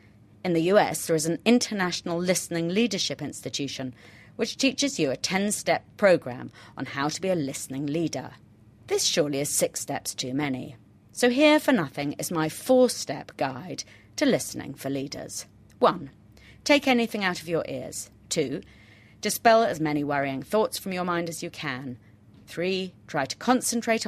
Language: English